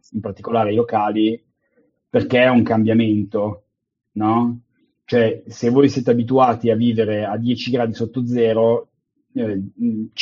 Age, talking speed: 30-49, 130 wpm